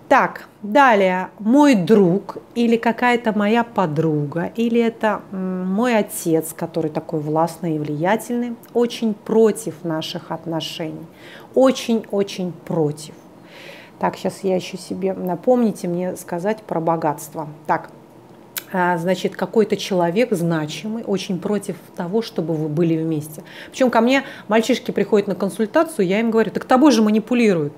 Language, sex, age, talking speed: Russian, female, 30-49, 125 wpm